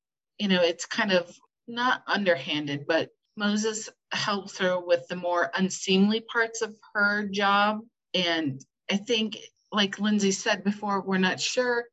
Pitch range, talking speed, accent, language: 170-210 Hz, 145 wpm, American, English